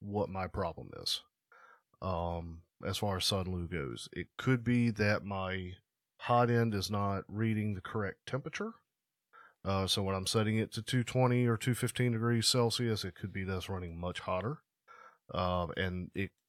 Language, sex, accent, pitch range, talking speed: English, male, American, 95-115 Hz, 165 wpm